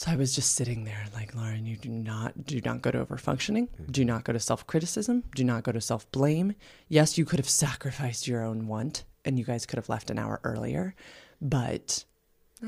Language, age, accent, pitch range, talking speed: English, 20-39, American, 130-185 Hz, 215 wpm